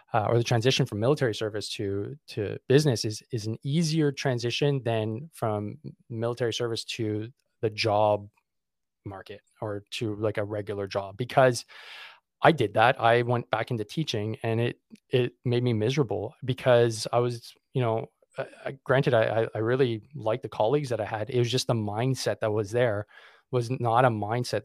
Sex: male